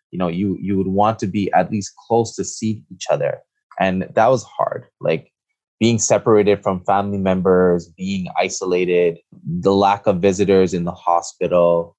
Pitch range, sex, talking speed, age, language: 90-110 Hz, male, 170 wpm, 20-39, English